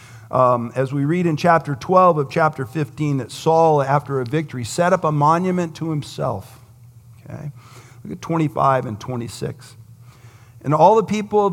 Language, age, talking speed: English, 50-69, 165 wpm